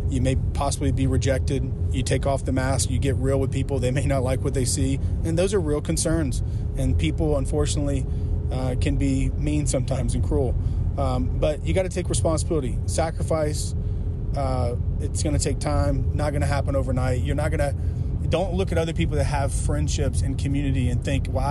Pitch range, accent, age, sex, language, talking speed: 85-125 Hz, American, 30-49, male, English, 205 wpm